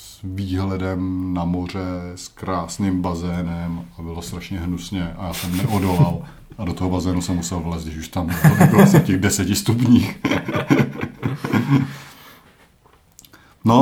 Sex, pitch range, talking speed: male, 90-115 Hz, 130 wpm